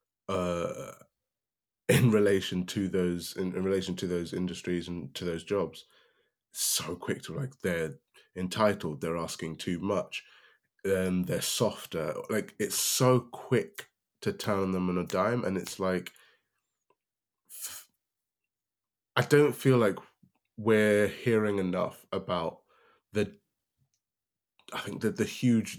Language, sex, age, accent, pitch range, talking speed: English, male, 20-39, British, 90-105 Hz, 135 wpm